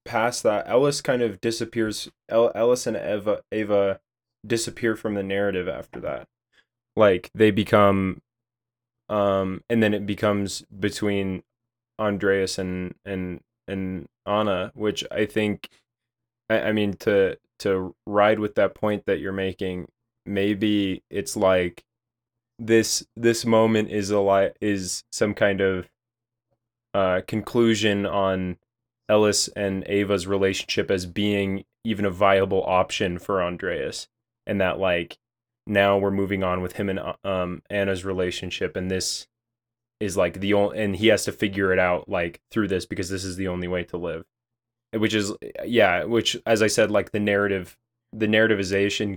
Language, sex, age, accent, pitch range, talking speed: English, male, 20-39, American, 95-115 Hz, 150 wpm